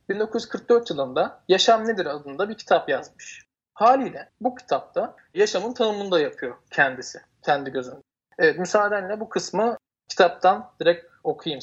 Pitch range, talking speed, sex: 155-210 Hz, 130 wpm, male